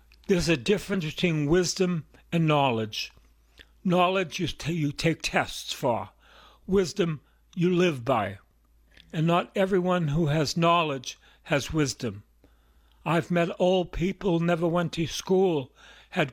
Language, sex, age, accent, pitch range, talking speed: English, male, 60-79, American, 130-185 Hz, 125 wpm